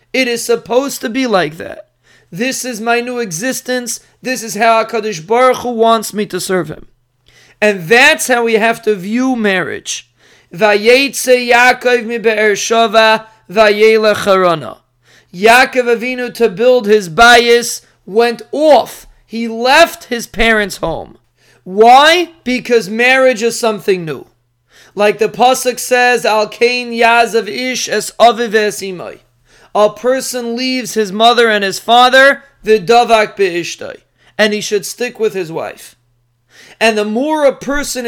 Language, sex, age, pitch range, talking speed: English, male, 30-49, 205-245 Hz, 125 wpm